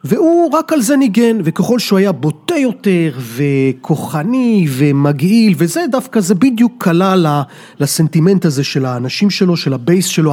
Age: 30-49